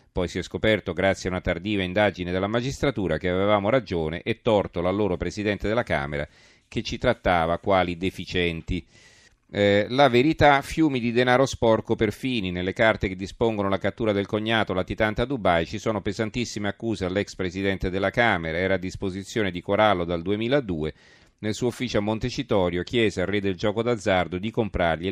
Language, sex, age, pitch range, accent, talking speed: Italian, male, 40-59, 90-110 Hz, native, 175 wpm